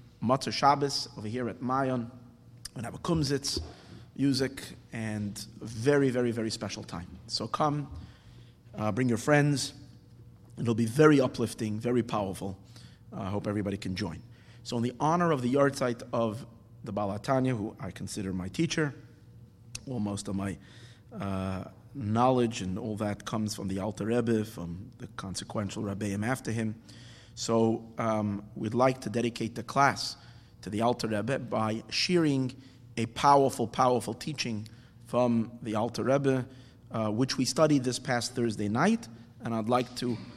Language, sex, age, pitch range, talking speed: English, male, 30-49, 110-130 Hz, 155 wpm